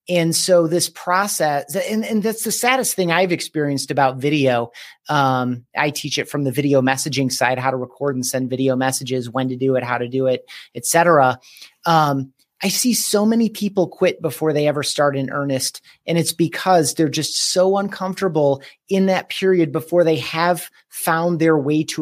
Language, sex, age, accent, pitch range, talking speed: English, male, 30-49, American, 140-170 Hz, 190 wpm